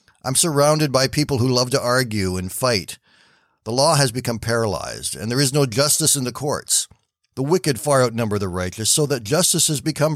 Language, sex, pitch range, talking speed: English, male, 110-145 Hz, 200 wpm